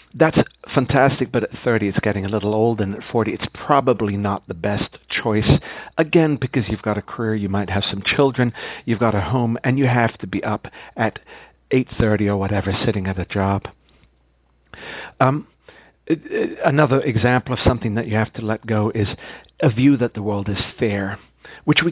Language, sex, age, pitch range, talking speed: English, male, 50-69, 100-125 Hz, 190 wpm